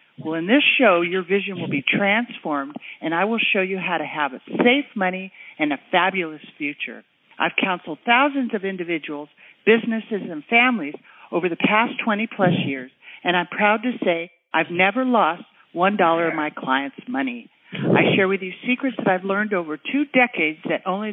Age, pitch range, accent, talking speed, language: 50-69, 170-235 Hz, American, 180 wpm, English